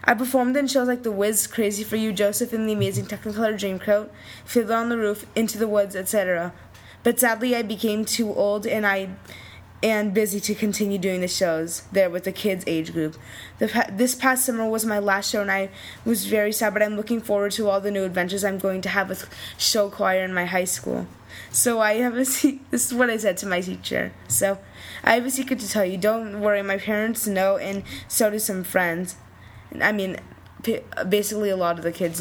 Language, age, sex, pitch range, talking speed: English, 20-39, female, 185-220 Hz, 220 wpm